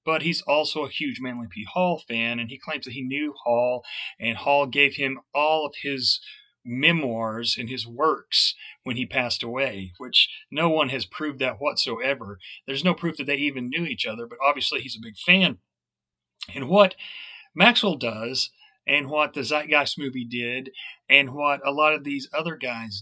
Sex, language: male, English